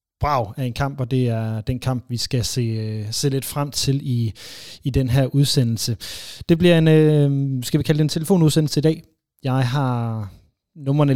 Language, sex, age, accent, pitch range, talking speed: Danish, male, 30-49, native, 115-145 Hz, 185 wpm